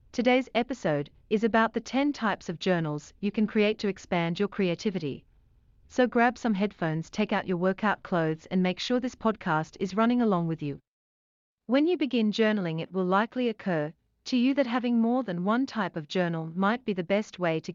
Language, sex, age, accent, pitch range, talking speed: English, female, 40-59, Australian, 165-235 Hz, 200 wpm